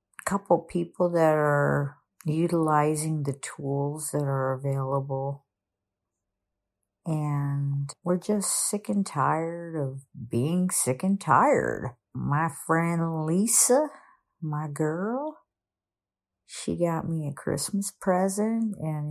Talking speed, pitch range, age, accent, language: 105 wpm, 140-205 Hz, 50-69, American, English